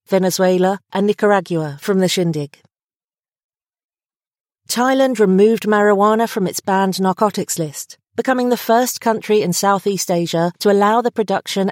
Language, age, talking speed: English, 40-59, 130 wpm